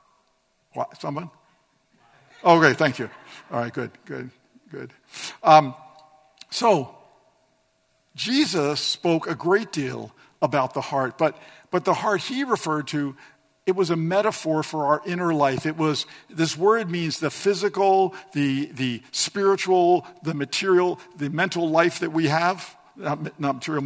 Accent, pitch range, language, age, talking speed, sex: American, 145-180 Hz, English, 50-69, 135 wpm, male